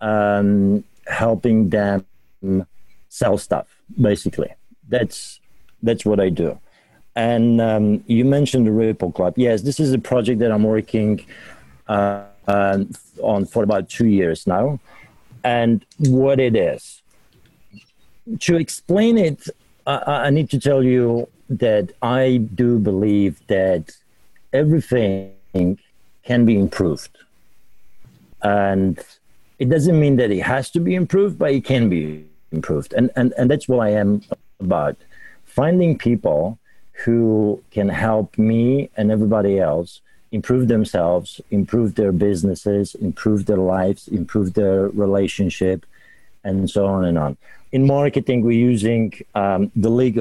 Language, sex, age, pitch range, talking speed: English, male, 50-69, 100-125 Hz, 130 wpm